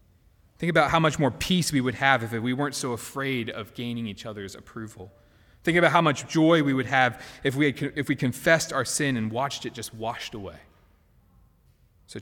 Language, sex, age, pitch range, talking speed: English, male, 30-49, 115-170 Hz, 200 wpm